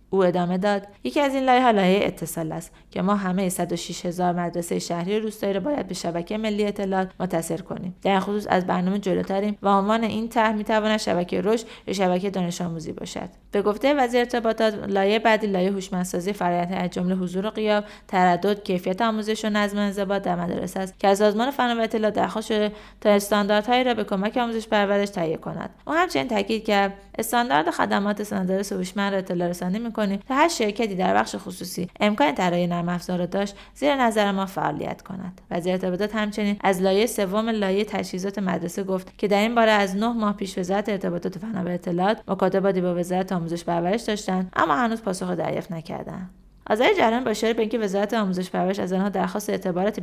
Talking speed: 185 wpm